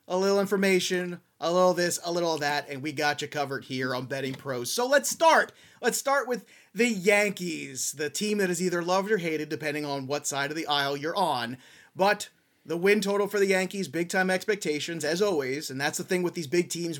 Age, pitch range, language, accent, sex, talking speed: 30-49, 145-185 Hz, English, American, male, 230 wpm